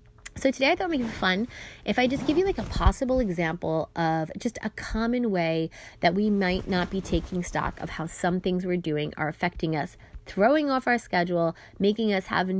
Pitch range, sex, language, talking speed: 180-250 Hz, female, English, 215 wpm